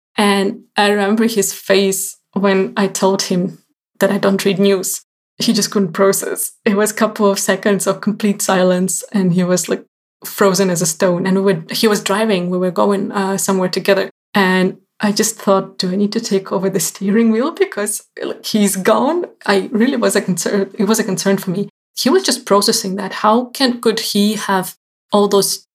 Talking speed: 195 wpm